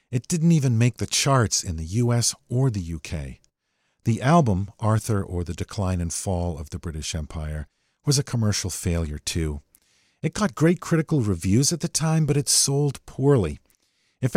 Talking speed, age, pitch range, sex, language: 175 wpm, 50-69, 90-145 Hz, male, English